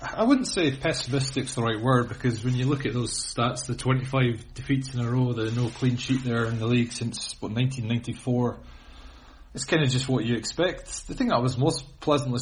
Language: English